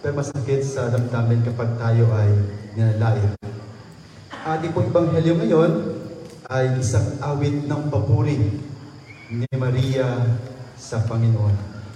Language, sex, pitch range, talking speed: English, male, 115-145 Hz, 105 wpm